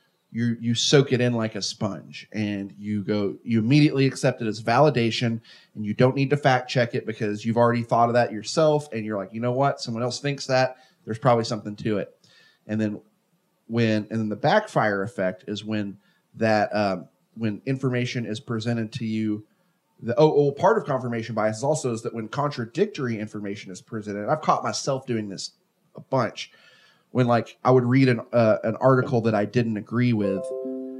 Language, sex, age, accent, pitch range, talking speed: English, male, 30-49, American, 110-130 Hz, 195 wpm